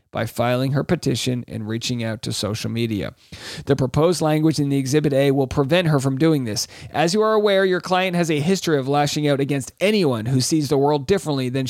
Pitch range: 135-180 Hz